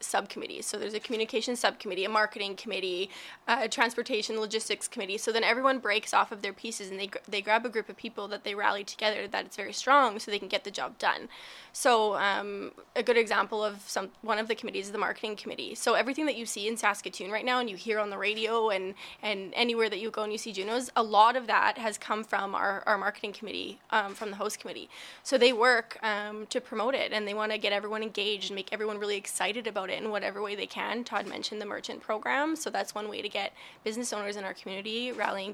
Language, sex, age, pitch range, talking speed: English, female, 20-39, 210-245 Hz, 245 wpm